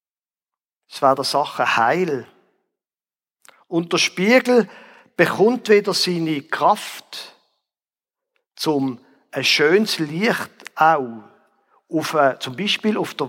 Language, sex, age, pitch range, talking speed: German, male, 50-69, 175-220 Hz, 105 wpm